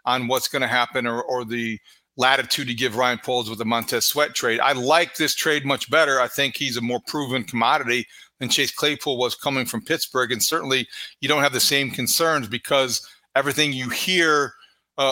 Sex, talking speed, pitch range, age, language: male, 205 wpm, 125-145 Hz, 40-59, English